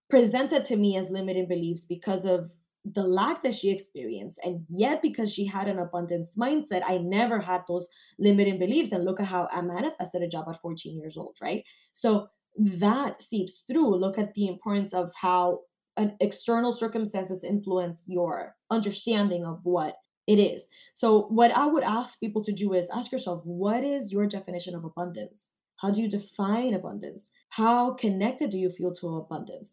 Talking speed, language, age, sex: 180 wpm, English, 20-39, female